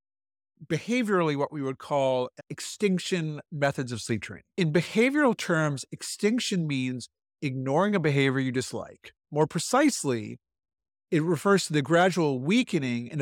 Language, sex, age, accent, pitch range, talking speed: English, male, 50-69, American, 130-185 Hz, 130 wpm